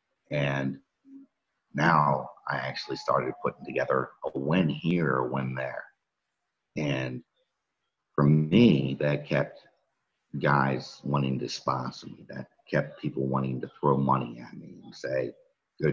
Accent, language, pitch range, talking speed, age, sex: American, English, 65-70 Hz, 130 wpm, 50-69, male